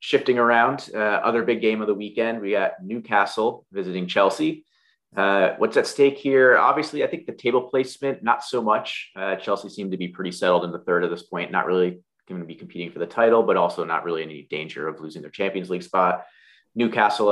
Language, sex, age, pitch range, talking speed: English, male, 30-49, 90-120 Hz, 220 wpm